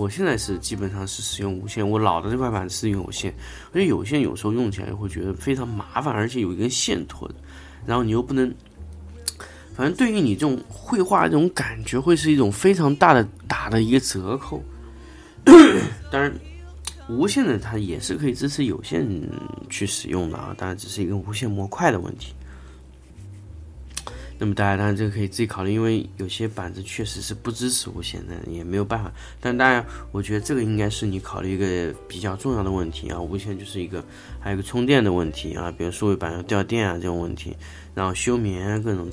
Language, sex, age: Chinese, male, 20-39